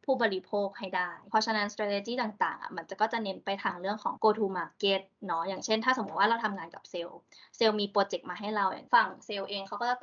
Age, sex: 20-39, female